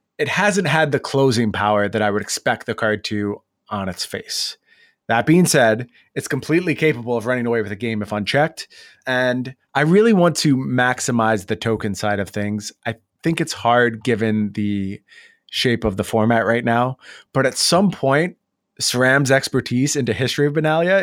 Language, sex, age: English, male, 20-39